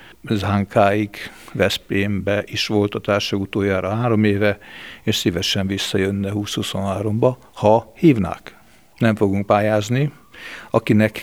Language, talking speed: Hungarian, 100 wpm